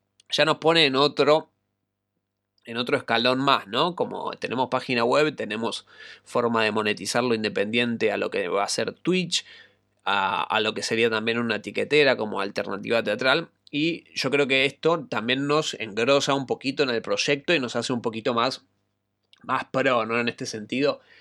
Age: 20-39